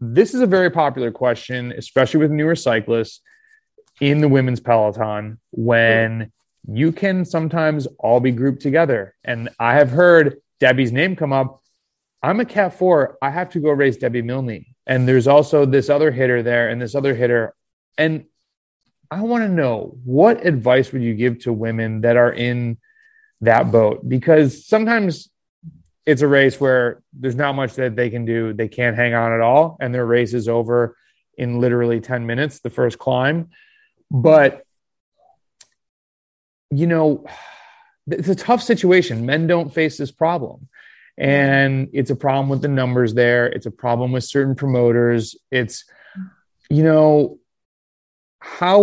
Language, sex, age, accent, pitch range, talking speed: English, male, 30-49, American, 120-160 Hz, 160 wpm